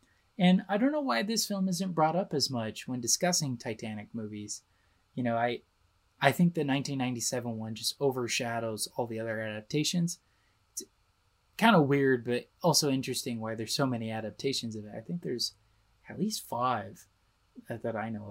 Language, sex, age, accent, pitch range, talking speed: English, male, 20-39, American, 110-155 Hz, 175 wpm